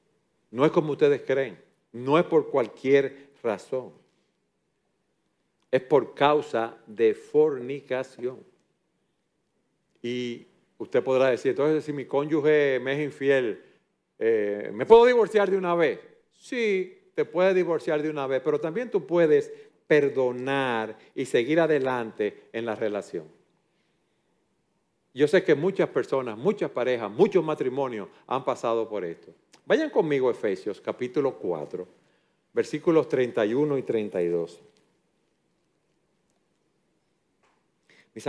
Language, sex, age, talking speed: Spanish, male, 50-69, 120 wpm